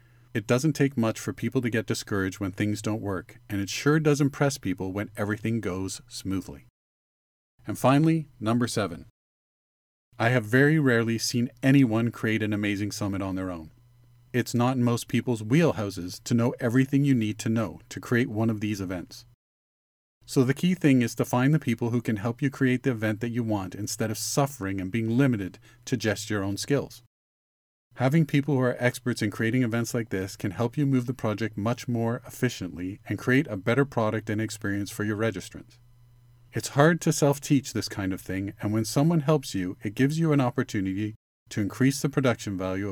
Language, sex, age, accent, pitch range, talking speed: English, male, 40-59, American, 105-130 Hz, 195 wpm